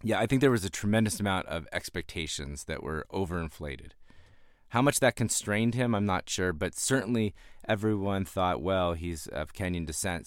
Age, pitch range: 30-49, 80-105 Hz